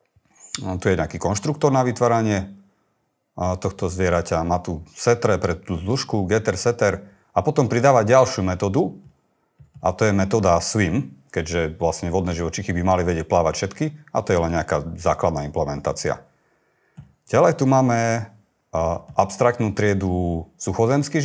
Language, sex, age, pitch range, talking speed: Slovak, male, 40-59, 85-120 Hz, 140 wpm